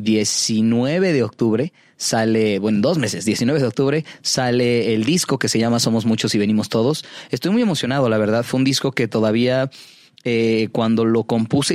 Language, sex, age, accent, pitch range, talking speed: Spanish, male, 30-49, Mexican, 110-135 Hz, 180 wpm